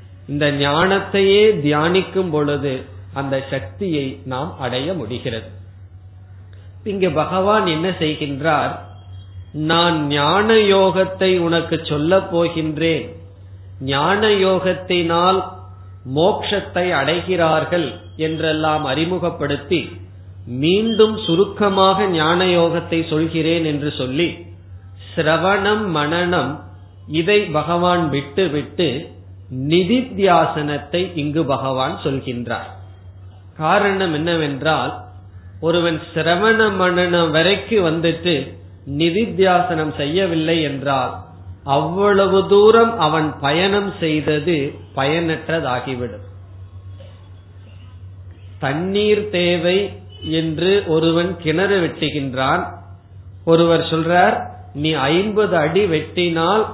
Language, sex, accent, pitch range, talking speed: Tamil, male, native, 110-175 Hz, 70 wpm